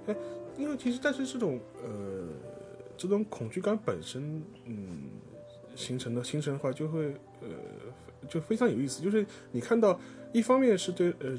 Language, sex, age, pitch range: Chinese, male, 20-39, 120-160 Hz